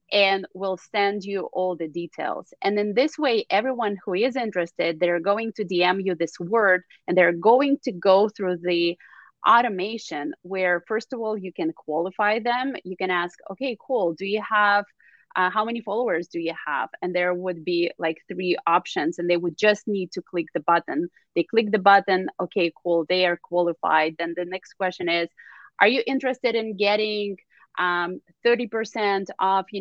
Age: 30-49